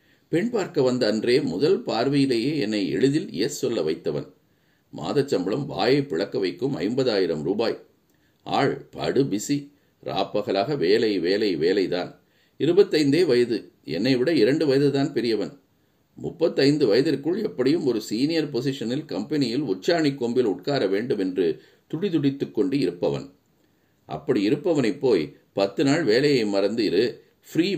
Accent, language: native, Tamil